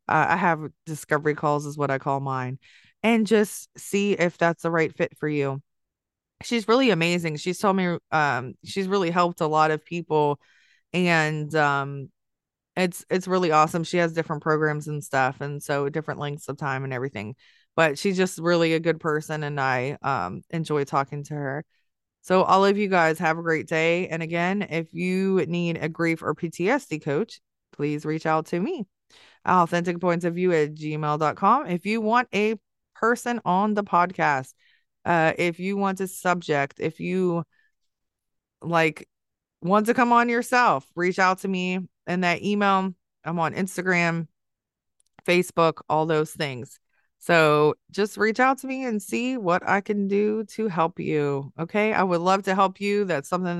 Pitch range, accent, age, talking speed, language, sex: 150-185 Hz, American, 20-39, 175 wpm, English, female